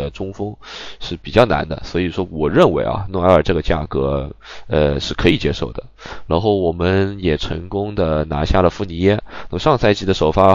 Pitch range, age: 80-100 Hz, 20-39